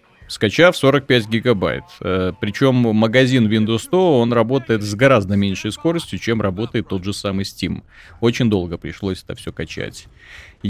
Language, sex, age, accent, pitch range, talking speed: Russian, male, 30-49, native, 105-155 Hz, 140 wpm